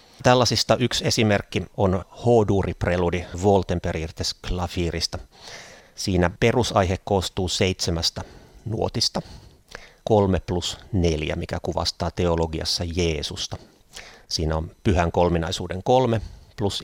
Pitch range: 85-100 Hz